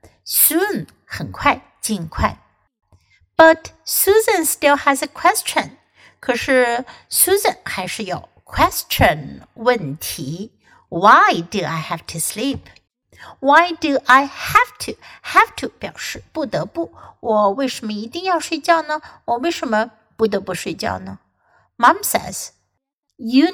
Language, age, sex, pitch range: Chinese, 60-79, female, 205-285 Hz